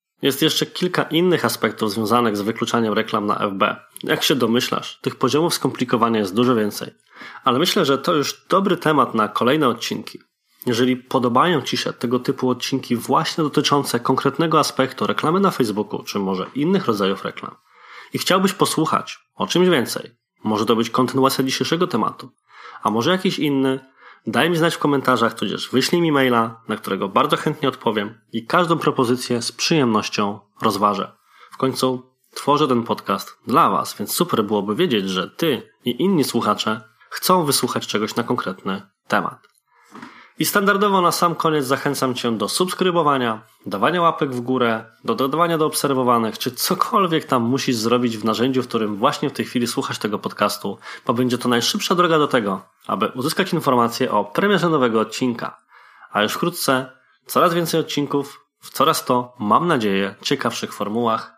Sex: male